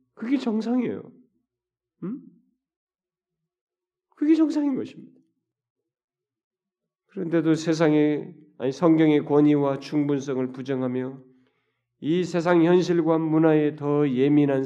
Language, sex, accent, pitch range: Korean, male, native, 120-150 Hz